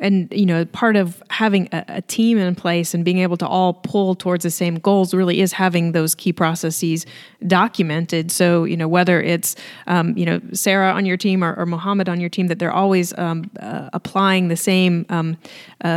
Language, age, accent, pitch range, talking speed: English, 30-49, American, 170-195 Hz, 210 wpm